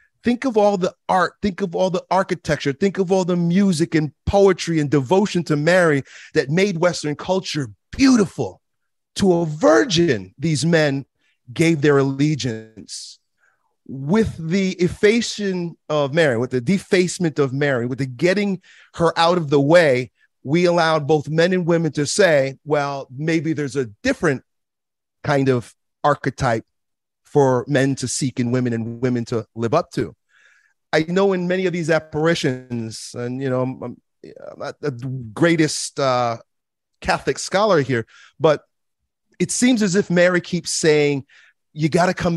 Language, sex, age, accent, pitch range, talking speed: English, male, 40-59, American, 135-185 Hz, 155 wpm